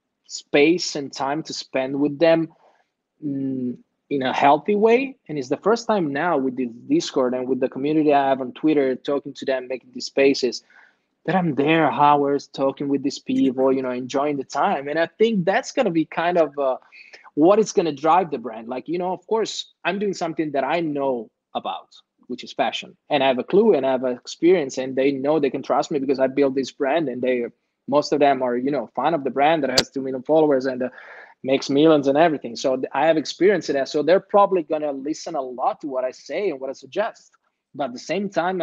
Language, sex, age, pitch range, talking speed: Italian, male, 20-39, 130-170 Hz, 240 wpm